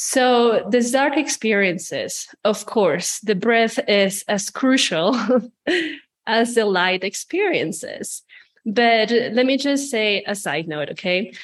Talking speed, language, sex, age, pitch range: 125 wpm, English, female, 20-39, 195-245 Hz